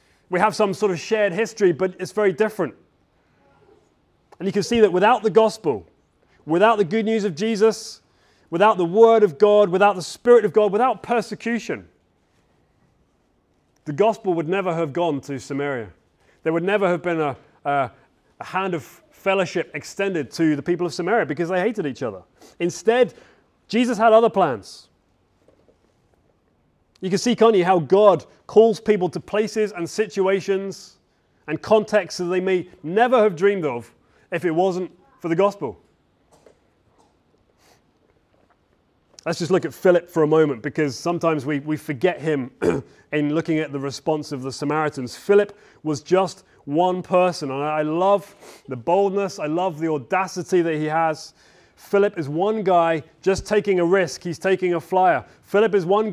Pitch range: 155-205 Hz